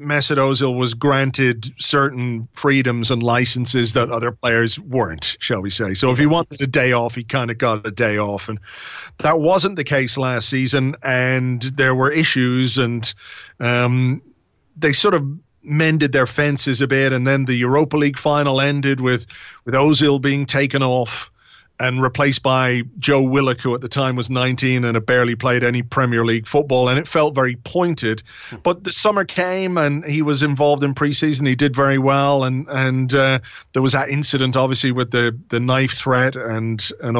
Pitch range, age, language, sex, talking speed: 125-145 Hz, 40-59, English, male, 185 wpm